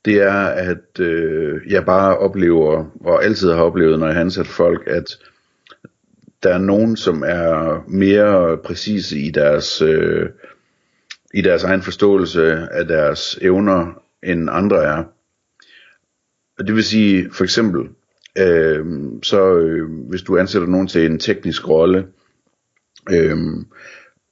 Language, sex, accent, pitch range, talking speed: Danish, male, native, 80-100 Hz, 130 wpm